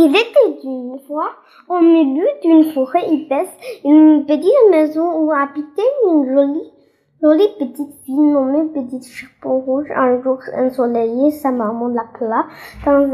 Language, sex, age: Chinese, female, 10-29